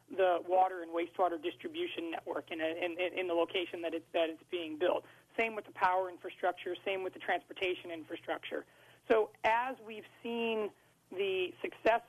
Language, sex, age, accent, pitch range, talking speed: English, male, 40-59, American, 180-240 Hz, 170 wpm